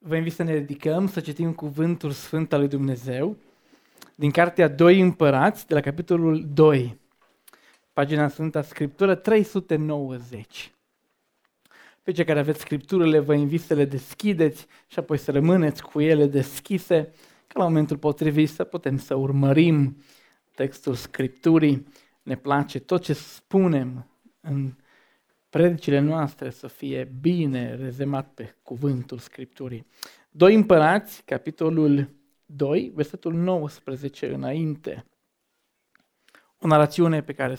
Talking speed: 125 wpm